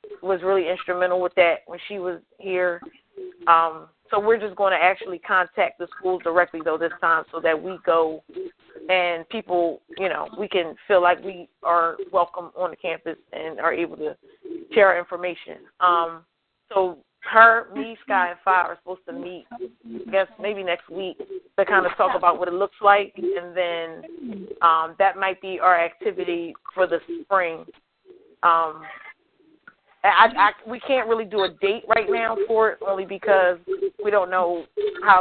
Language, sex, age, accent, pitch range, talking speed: English, female, 30-49, American, 175-230 Hz, 180 wpm